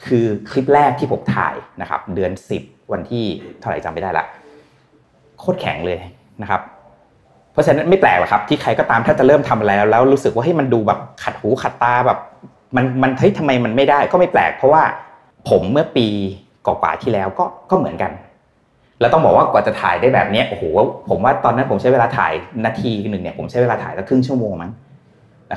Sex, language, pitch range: male, Thai, 110-140 Hz